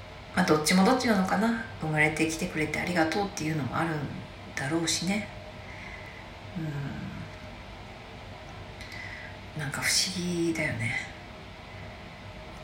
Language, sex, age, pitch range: Japanese, female, 40-59, 100-165 Hz